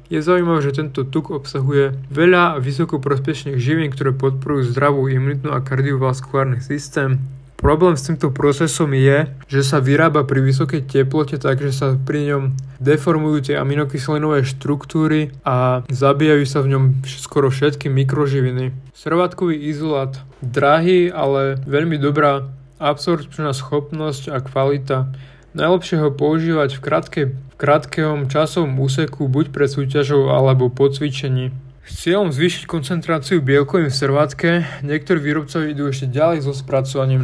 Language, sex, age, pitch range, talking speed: Slovak, male, 20-39, 135-155 Hz, 130 wpm